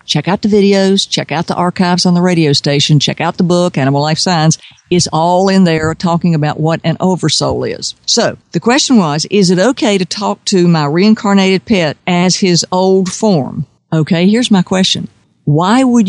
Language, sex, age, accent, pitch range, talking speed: English, female, 60-79, American, 160-200 Hz, 195 wpm